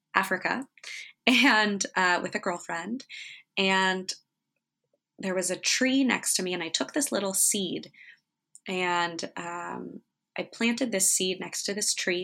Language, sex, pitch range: English, female, 180-210 Hz